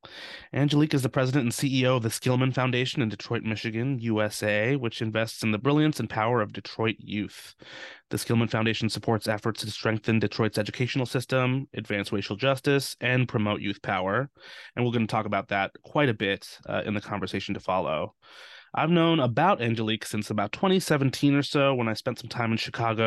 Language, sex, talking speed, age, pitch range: English, male, 190 wpm, 20-39, 110-130 Hz